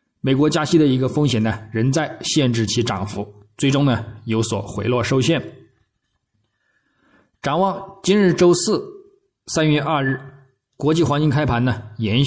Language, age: Chinese, 20-39